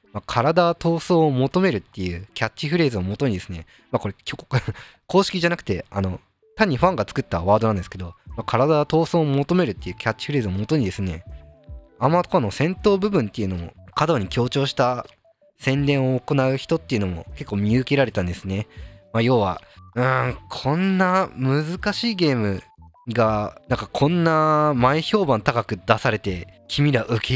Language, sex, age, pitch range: Japanese, male, 20-39, 100-145 Hz